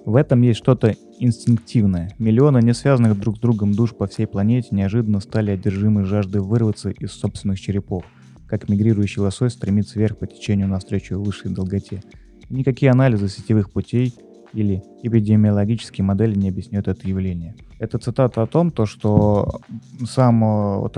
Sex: male